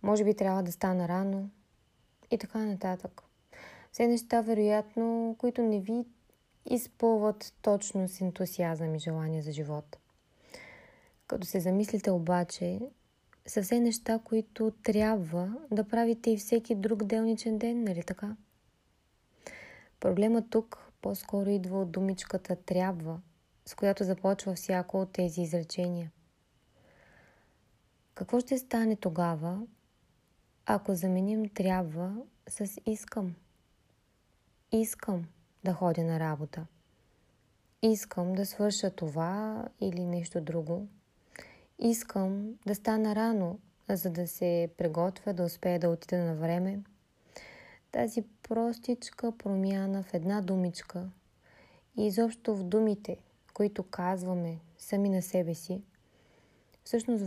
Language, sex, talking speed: Bulgarian, female, 110 wpm